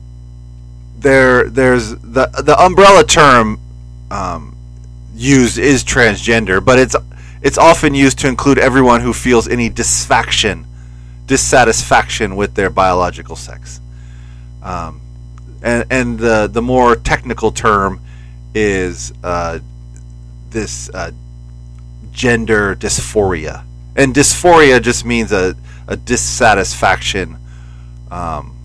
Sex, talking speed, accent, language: male, 100 wpm, American, English